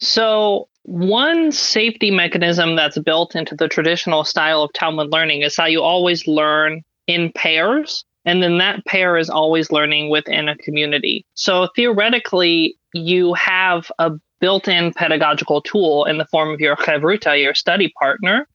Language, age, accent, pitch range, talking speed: English, 20-39, American, 155-185 Hz, 150 wpm